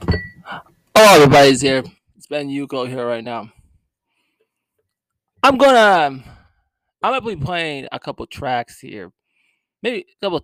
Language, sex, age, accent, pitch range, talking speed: English, male, 20-39, American, 125-175 Hz, 140 wpm